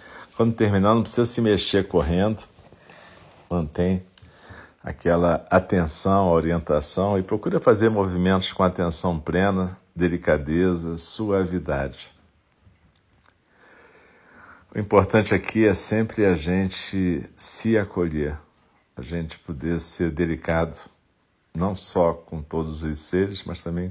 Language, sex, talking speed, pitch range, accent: Portuguese, male, 105 wpm, 80-95 Hz, Brazilian